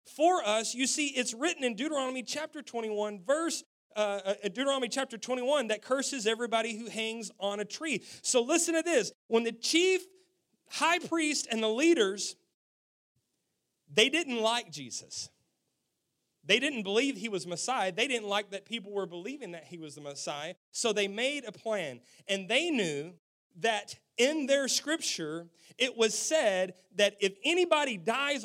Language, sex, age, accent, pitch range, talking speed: English, male, 30-49, American, 195-275 Hz, 160 wpm